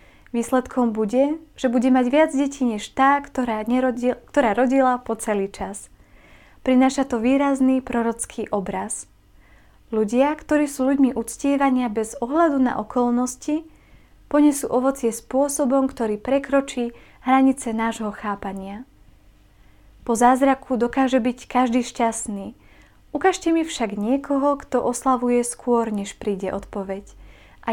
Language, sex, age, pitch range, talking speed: Slovak, female, 20-39, 220-265 Hz, 120 wpm